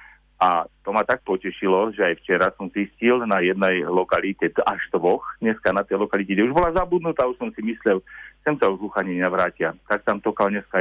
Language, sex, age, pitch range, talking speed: Slovak, male, 40-59, 95-115 Hz, 200 wpm